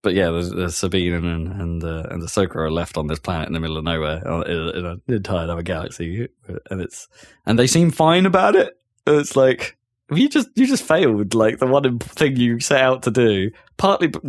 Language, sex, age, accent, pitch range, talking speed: English, male, 20-39, British, 90-130 Hz, 220 wpm